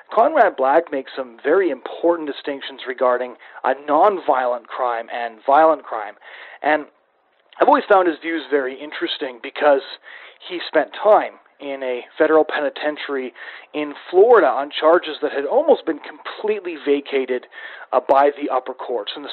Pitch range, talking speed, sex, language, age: 130-180 Hz, 145 wpm, male, English, 40-59